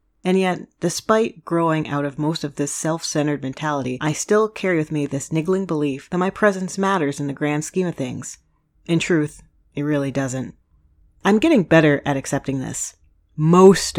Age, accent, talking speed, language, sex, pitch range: 40-59, American, 175 wpm, English, female, 135-180 Hz